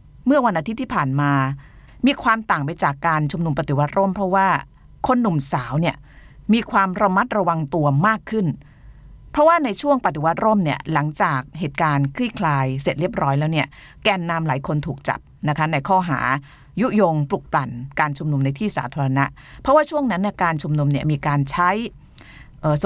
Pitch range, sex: 140-195 Hz, female